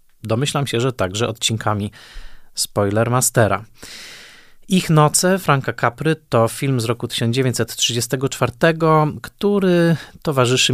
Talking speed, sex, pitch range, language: 100 wpm, male, 110-135 Hz, Polish